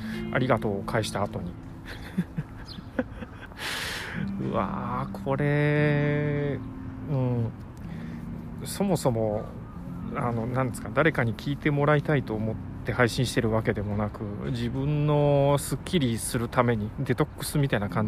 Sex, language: male, Japanese